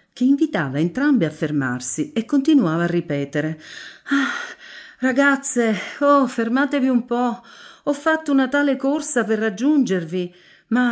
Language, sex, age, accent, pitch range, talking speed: Italian, female, 50-69, native, 155-250 Hz, 125 wpm